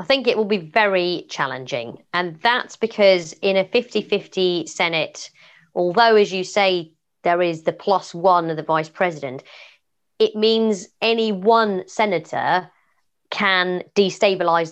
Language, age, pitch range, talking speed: English, 30-49, 165-215 Hz, 140 wpm